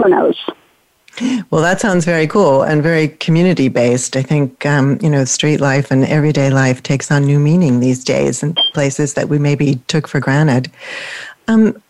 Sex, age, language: female, 40-59, English